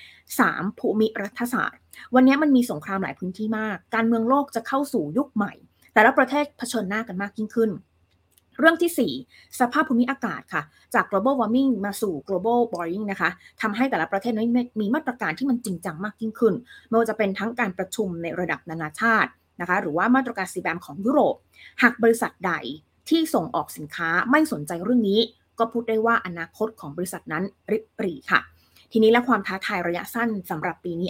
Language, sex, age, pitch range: Thai, female, 20-39, 190-240 Hz